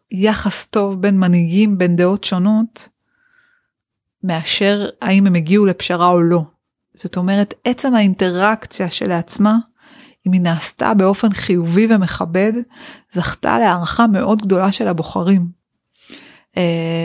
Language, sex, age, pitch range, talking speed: Hebrew, female, 30-49, 180-215 Hz, 115 wpm